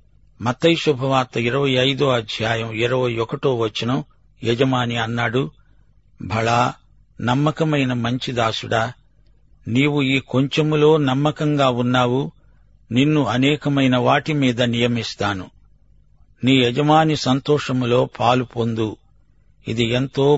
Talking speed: 80 wpm